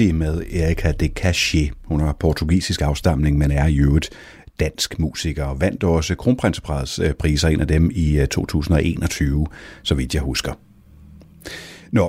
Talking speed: 140 wpm